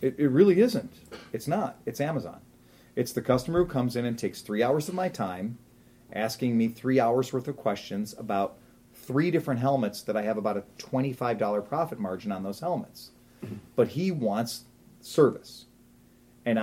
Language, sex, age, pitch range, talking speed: English, male, 40-59, 120-175 Hz, 170 wpm